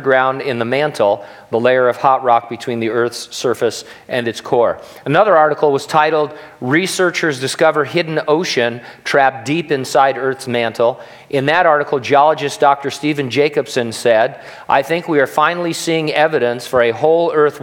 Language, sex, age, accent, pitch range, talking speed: English, male, 40-59, American, 120-155 Hz, 165 wpm